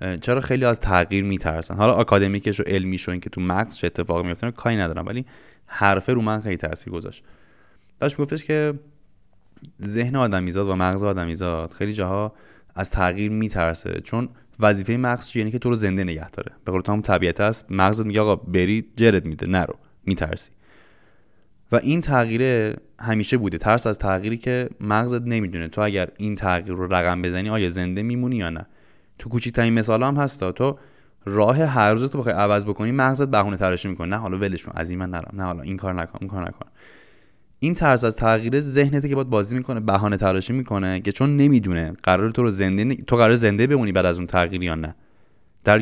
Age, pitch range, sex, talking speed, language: 20-39, 95-120 Hz, male, 195 wpm, Persian